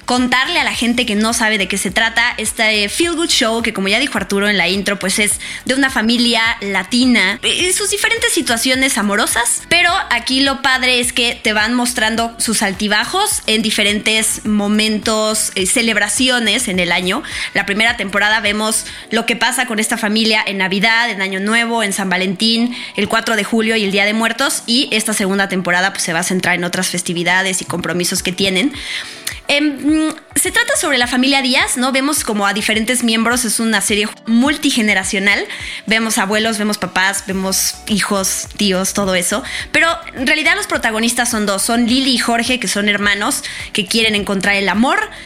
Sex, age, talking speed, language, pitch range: female, 20-39, 185 wpm, Spanish, 200-245 Hz